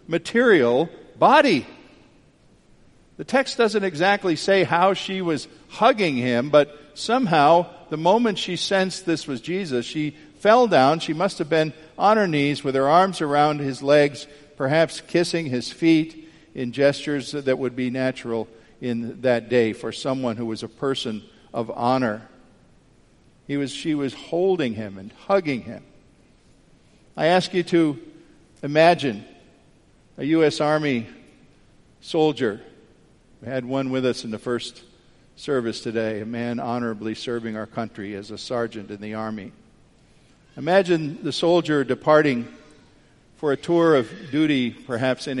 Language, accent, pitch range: English, American, 125-155 Hz